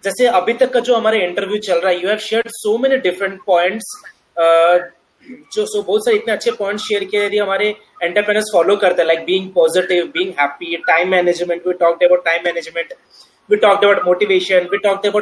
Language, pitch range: Hindi, 185-245 Hz